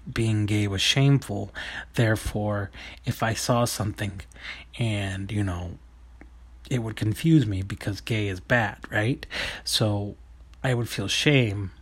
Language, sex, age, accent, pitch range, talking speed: English, male, 30-49, American, 95-125 Hz, 130 wpm